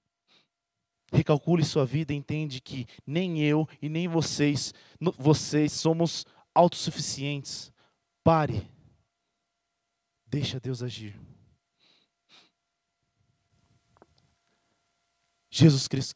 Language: Portuguese